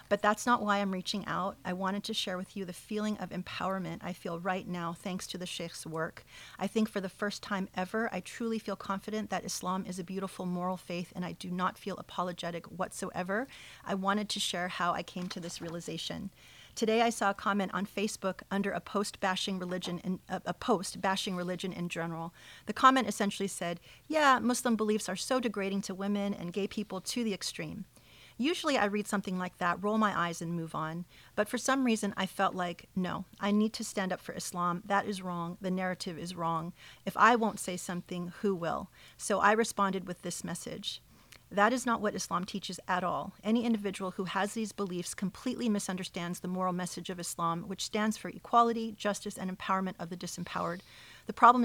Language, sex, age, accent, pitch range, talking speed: English, female, 40-59, American, 180-205 Hz, 200 wpm